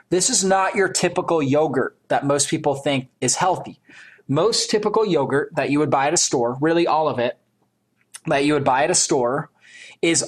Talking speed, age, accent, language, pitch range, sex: 200 wpm, 30-49, American, English, 135-185 Hz, male